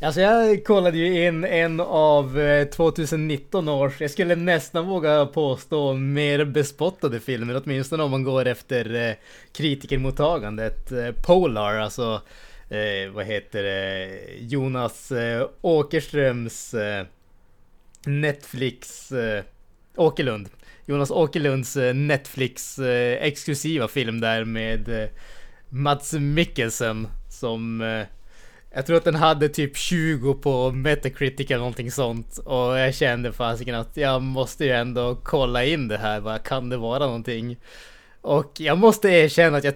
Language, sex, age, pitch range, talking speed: Swedish, male, 20-39, 120-160 Hz, 120 wpm